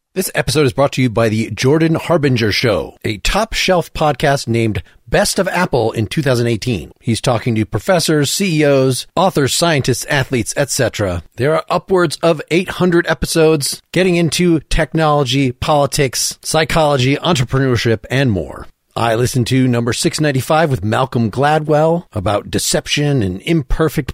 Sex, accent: male, American